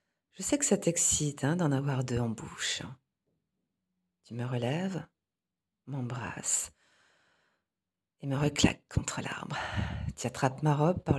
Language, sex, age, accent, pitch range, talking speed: French, female, 40-59, French, 130-175 Hz, 135 wpm